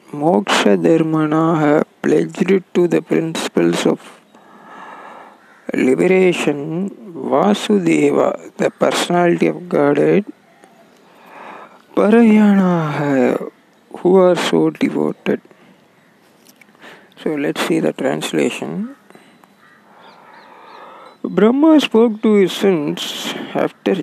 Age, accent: 50-69, native